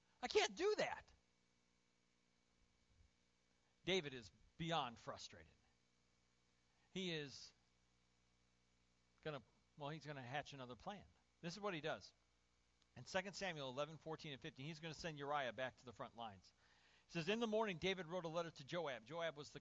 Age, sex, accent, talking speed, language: 40-59, male, American, 170 wpm, English